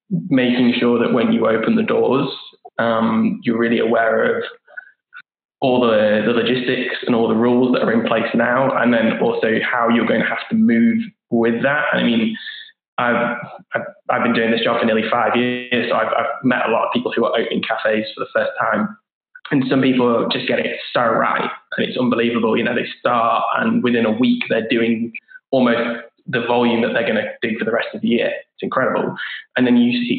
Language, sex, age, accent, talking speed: English, male, 10-29, British, 215 wpm